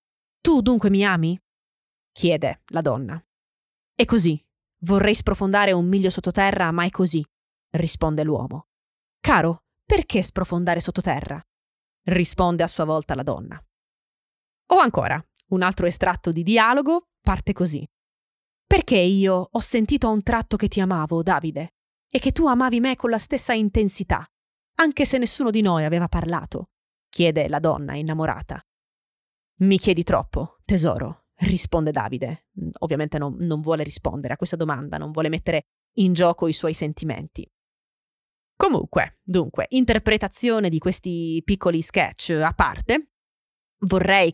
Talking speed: 135 wpm